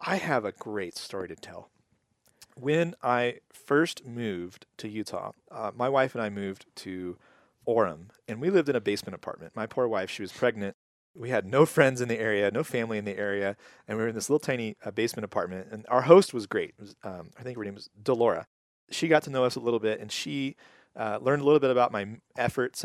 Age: 30-49